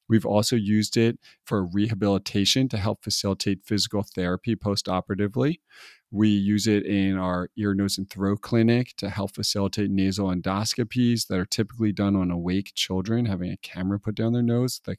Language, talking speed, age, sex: English, 170 wpm, 40-59, male